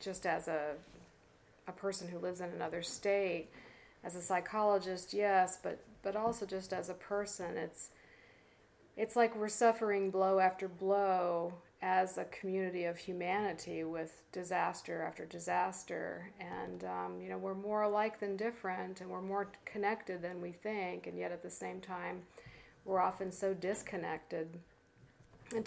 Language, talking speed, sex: English, 150 wpm, female